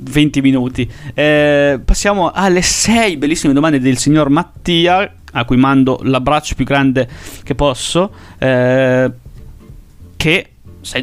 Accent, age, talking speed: native, 30-49, 120 wpm